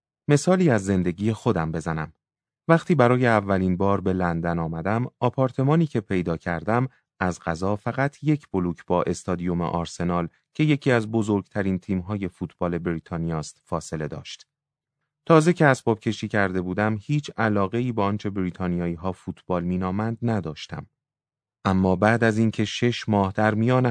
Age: 30-49